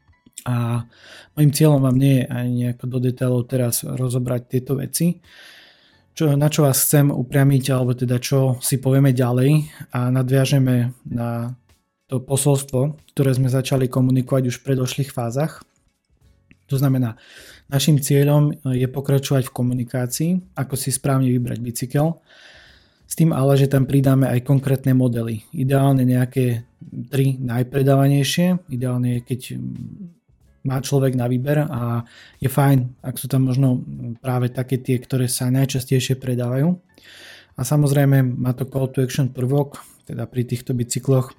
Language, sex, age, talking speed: Slovak, male, 20-39, 140 wpm